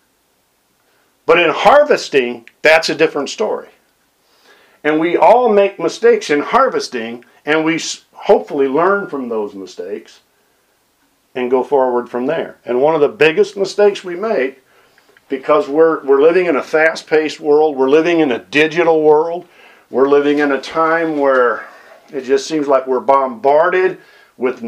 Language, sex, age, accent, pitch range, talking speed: English, male, 50-69, American, 140-195 Hz, 150 wpm